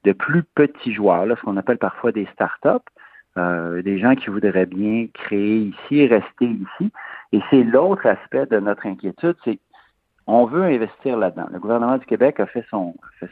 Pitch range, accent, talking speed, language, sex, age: 95-120 Hz, French, 190 wpm, French, male, 50-69